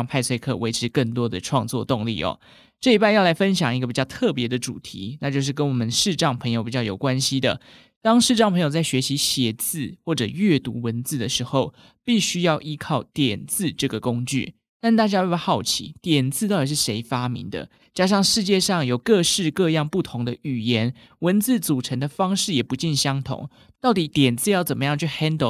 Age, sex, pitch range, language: 20-39, male, 125-160 Hz, Chinese